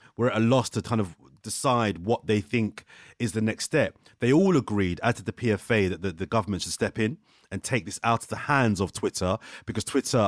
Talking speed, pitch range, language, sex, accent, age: 230 wpm, 95-115 Hz, English, male, British, 30-49